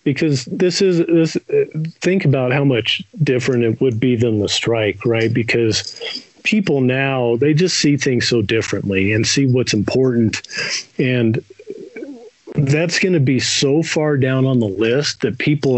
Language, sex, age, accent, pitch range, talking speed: English, male, 40-59, American, 120-150 Hz, 160 wpm